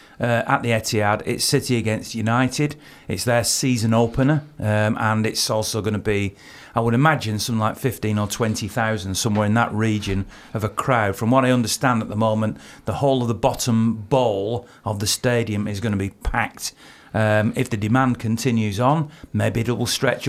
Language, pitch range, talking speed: English, 105-130 Hz, 190 wpm